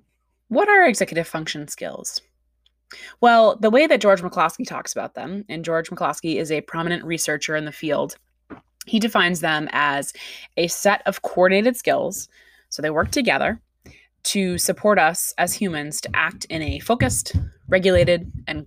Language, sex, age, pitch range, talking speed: English, female, 20-39, 155-205 Hz, 160 wpm